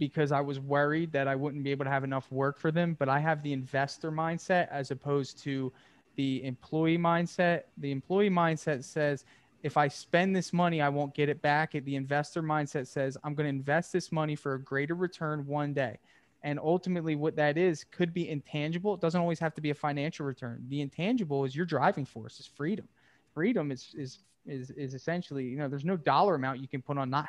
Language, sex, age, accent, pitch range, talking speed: English, male, 20-39, American, 135-170 Hz, 220 wpm